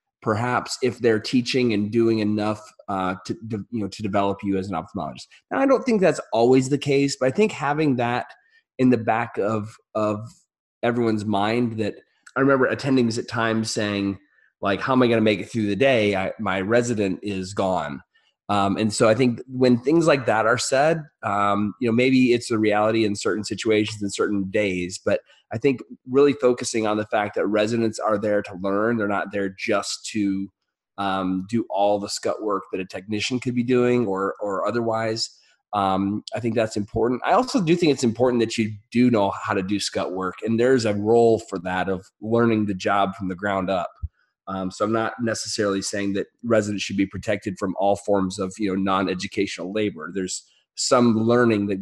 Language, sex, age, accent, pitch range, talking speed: English, male, 30-49, American, 100-120 Hz, 200 wpm